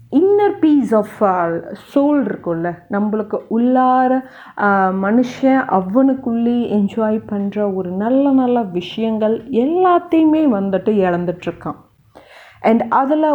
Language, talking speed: Tamil, 90 wpm